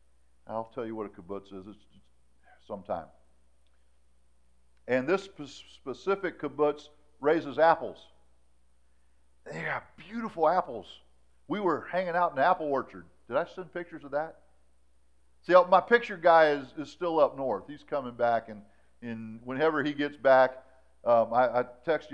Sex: male